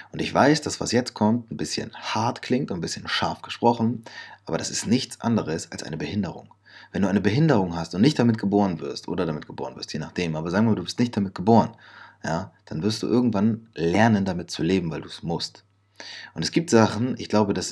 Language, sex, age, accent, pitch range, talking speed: German, male, 30-49, German, 85-110 Hz, 235 wpm